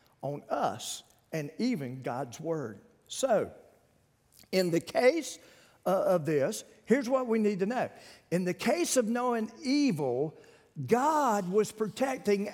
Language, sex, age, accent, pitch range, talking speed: English, male, 50-69, American, 185-275 Hz, 130 wpm